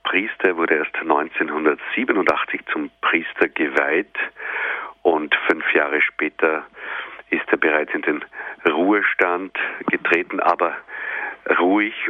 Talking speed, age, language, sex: 100 wpm, 50-69, German, male